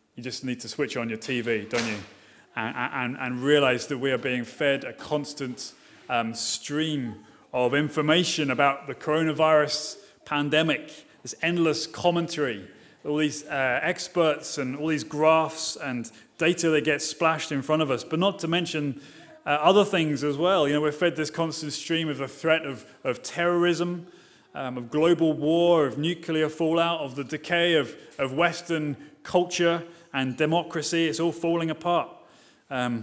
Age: 30-49